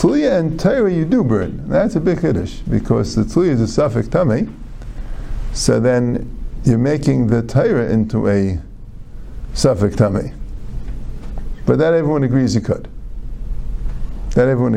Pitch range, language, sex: 115-175 Hz, English, male